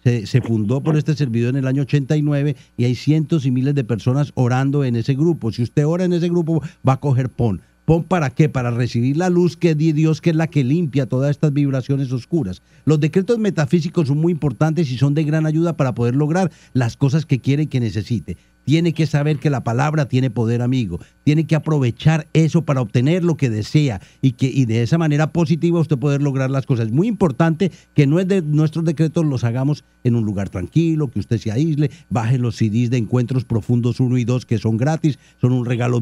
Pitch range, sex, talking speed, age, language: 125-155 Hz, male, 220 wpm, 50-69, Spanish